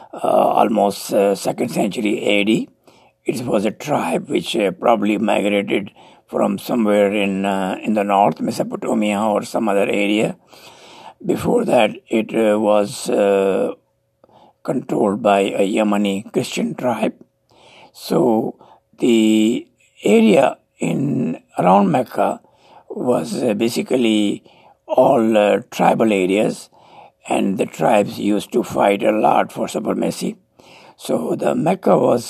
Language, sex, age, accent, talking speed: English, male, 60-79, Indian, 120 wpm